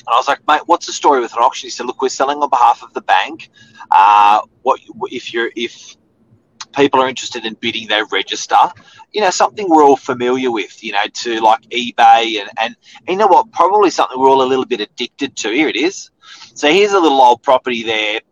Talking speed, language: 225 wpm, English